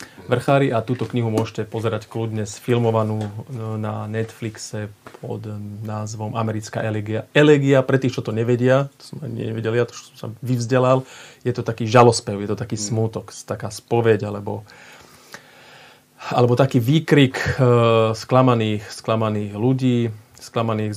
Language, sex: Slovak, male